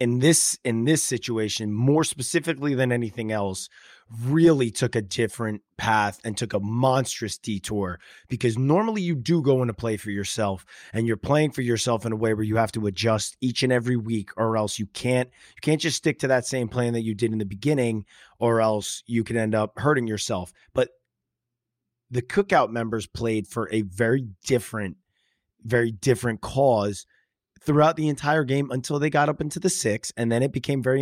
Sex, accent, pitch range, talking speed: male, American, 110-140 Hz, 195 wpm